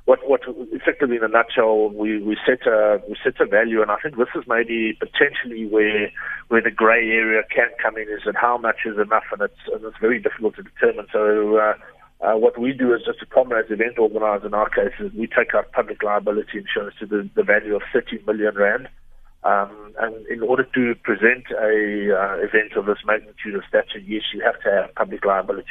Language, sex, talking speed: English, male, 220 wpm